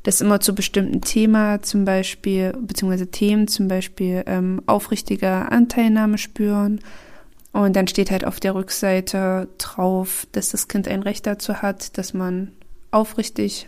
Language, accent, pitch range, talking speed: German, German, 185-215 Hz, 145 wpm